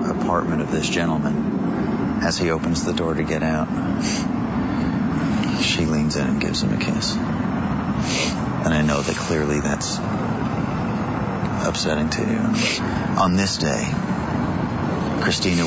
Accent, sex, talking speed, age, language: American, male, 125 wpm, 40-59, English